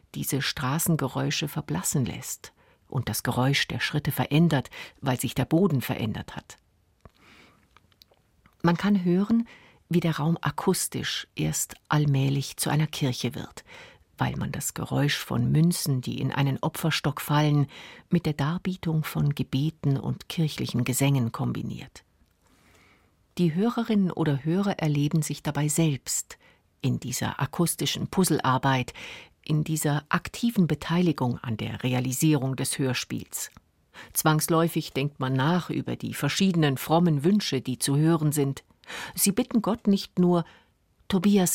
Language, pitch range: German, 135-175 Hz